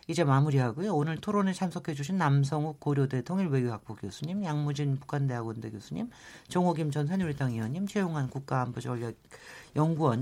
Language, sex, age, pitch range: Korean, male, 40-59, 135-185 Hz